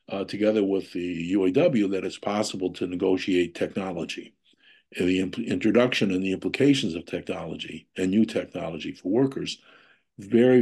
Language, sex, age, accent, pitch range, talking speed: English, male, 60-79, American, 90-115 Hz, 135 wpm